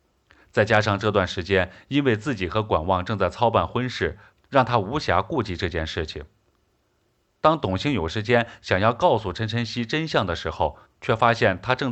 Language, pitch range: Chinese, 90-120 Hz